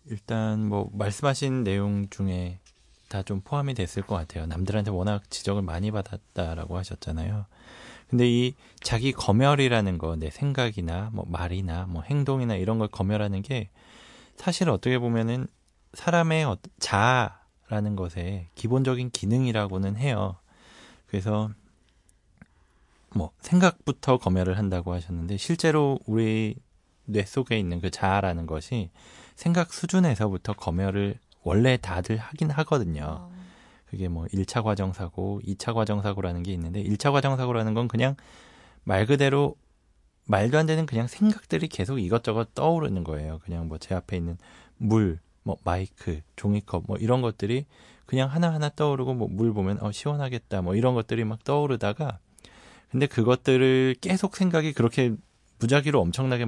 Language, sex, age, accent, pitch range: Korean, male, 20-39, native, 95-130 Hz